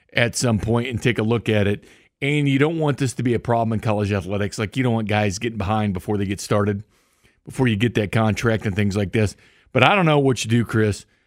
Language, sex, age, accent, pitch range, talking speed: English, male, 40-59, American, 105-145 Hz, 260 wpm